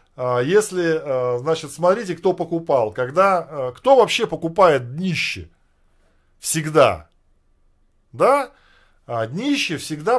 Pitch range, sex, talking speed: 145-195 Hz, male, 80 wpm